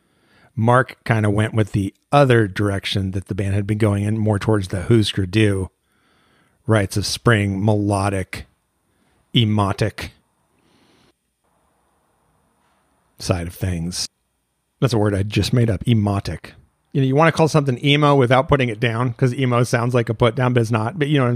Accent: American